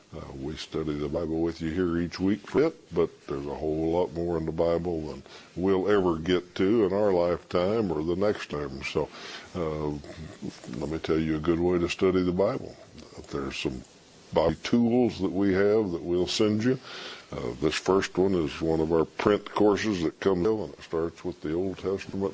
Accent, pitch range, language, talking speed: American, 80-95 Hz, English, 205 wpm